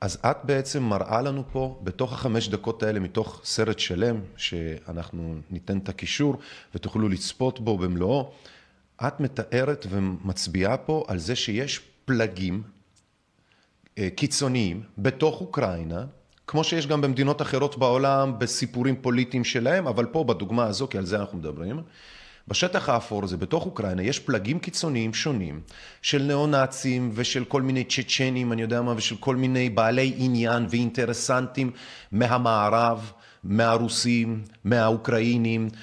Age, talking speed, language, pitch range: 30-49, 130 wpm, Hebrew, 105-135 Hz